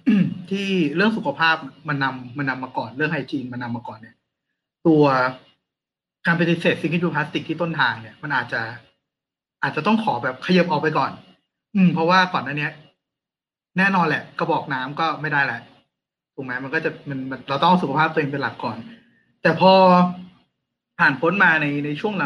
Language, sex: Thai, male